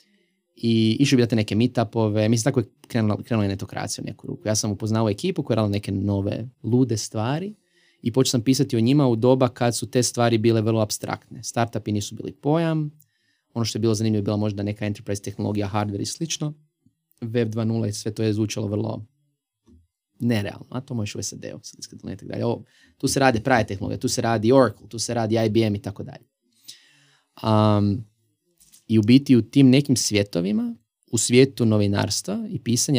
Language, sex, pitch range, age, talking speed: Croatian, male, 105-130 Hz, 20-39, 190 wpm